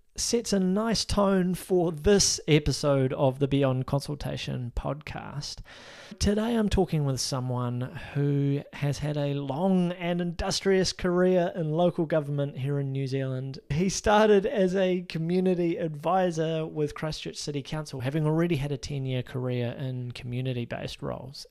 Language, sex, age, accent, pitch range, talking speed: English, male, 30-49, Australian, 135-175 Hz, 140 wpm